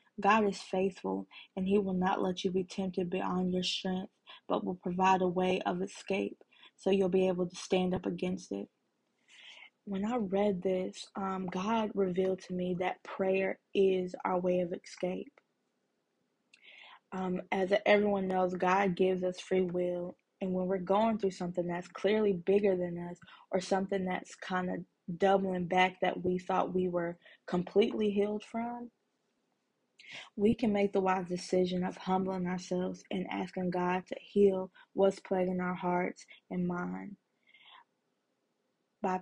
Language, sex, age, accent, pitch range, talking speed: English, female, 20-39, American, 185-195 Hz, 155 wpm